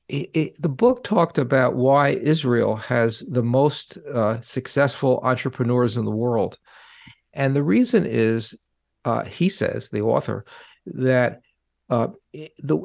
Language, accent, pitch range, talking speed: English, American, 120-145 Hz, 135 wpm